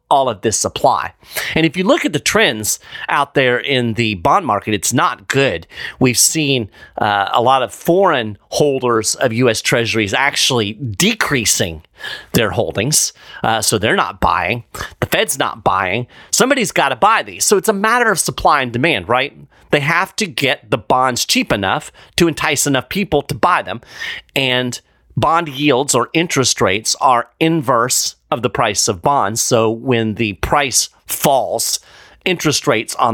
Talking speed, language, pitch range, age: 170 wpm, English, 115-165 Hz, 40-59